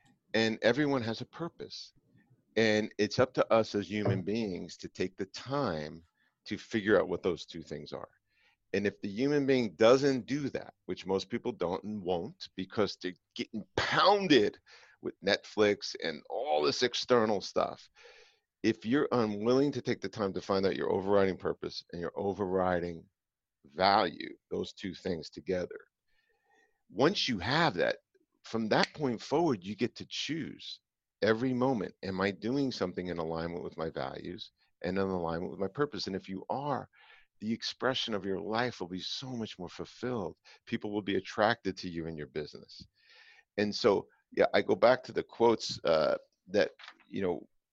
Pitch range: 95-130 Hz